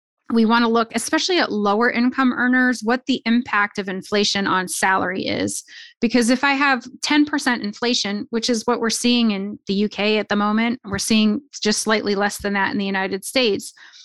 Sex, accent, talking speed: female, American, 190 wpm